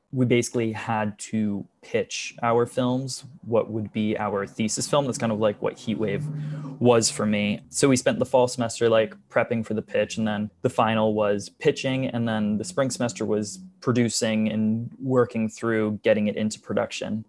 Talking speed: 185 wpm